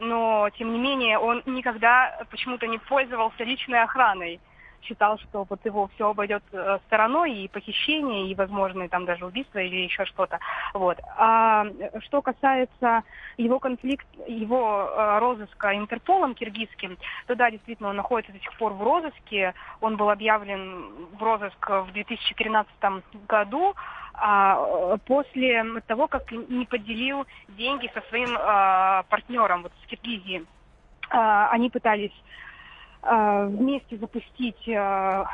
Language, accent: Russian, native